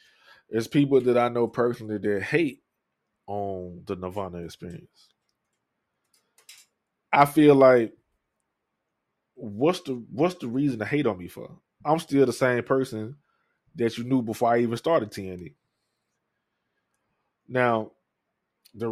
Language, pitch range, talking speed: English, 110-130 Hz, 125 wpm